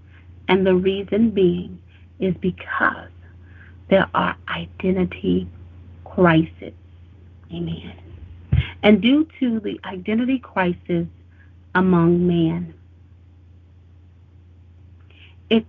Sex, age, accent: female, 30-49, American